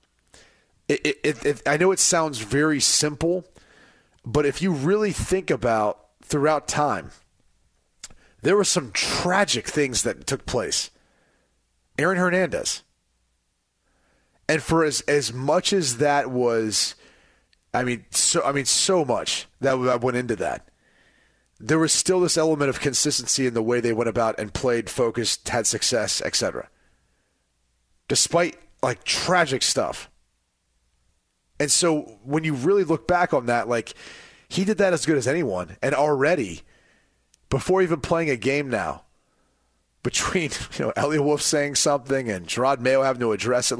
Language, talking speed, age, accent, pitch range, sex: English, 150 wpm, 30-49, American, 115-155 Hz, male